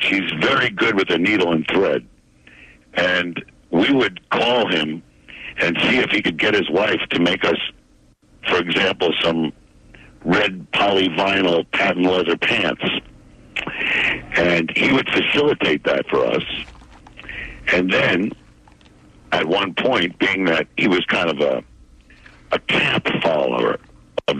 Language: English